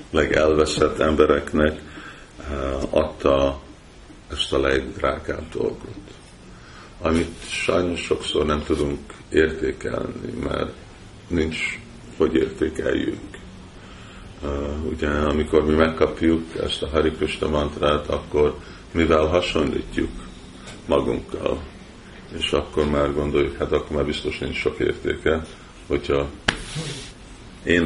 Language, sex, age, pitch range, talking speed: Hungarian, male, 50-69, 70-85 Hz, 95 wpm